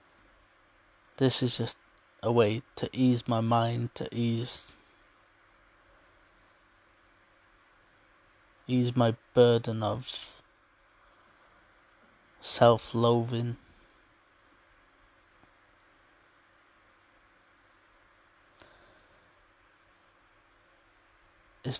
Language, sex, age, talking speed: English, male, 20-39, 45 wpm